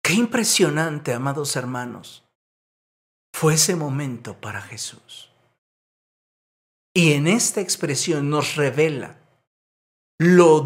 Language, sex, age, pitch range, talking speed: Spanish, male, 50-69, 115-160 Hz, 90 wpm